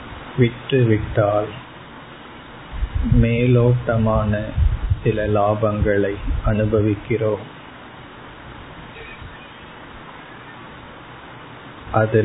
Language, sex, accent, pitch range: Tamil, male, native, 105-115 Hz